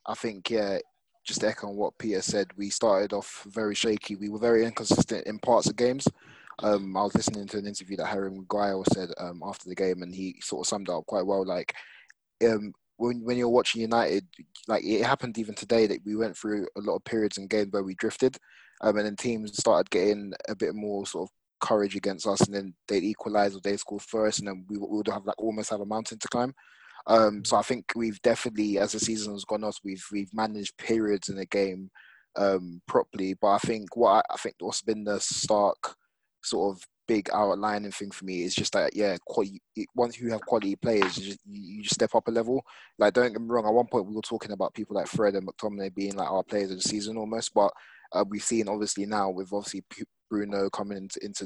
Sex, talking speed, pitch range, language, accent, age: male, 235 wpm, 100-110 Hz, English, British, 20-39